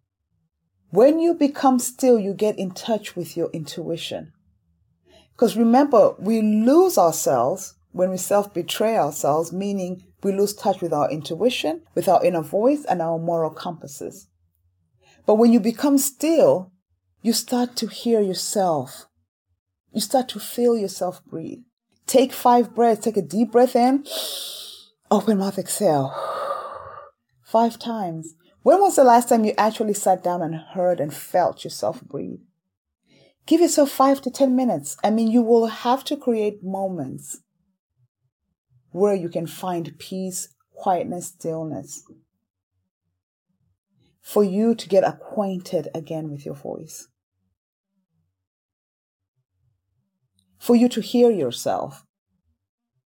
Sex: female